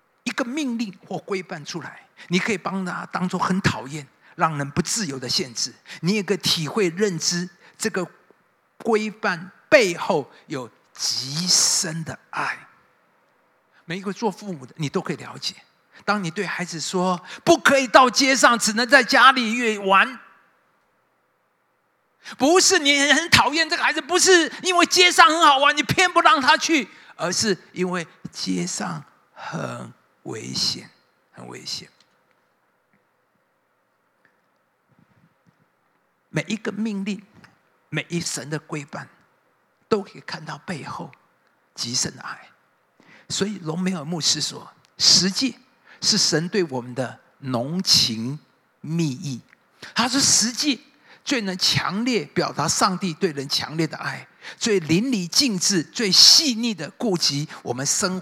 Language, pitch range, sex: Chinese, 155-235 Hz, male